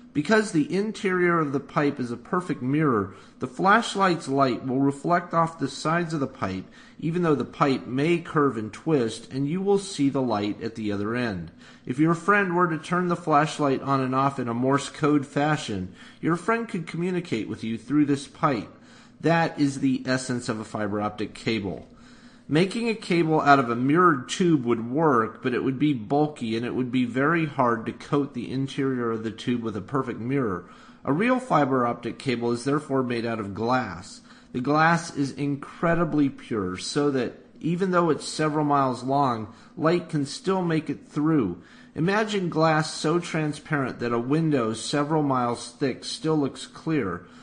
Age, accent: 40-59, American